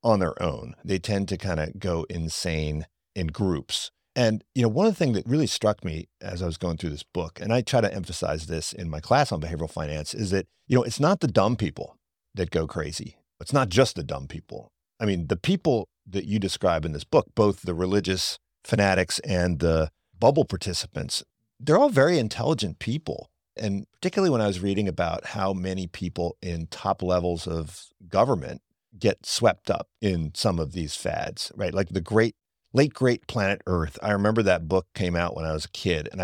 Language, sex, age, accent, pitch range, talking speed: English, male, 50-69, American, 85-120 Hz, 210 wpm